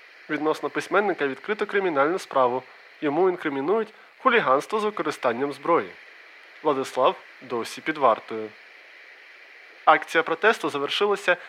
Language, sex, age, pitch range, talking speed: Ukrainian, male, 20-39, 140-175 Hz, 95 wpm